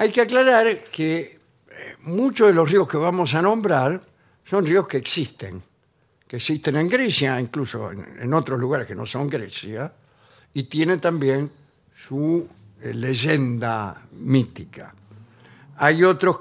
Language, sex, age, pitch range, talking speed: Spanish, male, 60-79, 120-180 Hz, 130 wpm